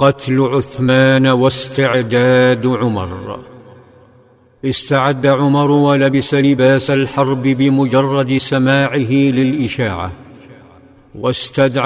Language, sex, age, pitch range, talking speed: Arabic, male, 50-69, 130-140 Hz, 65 wpm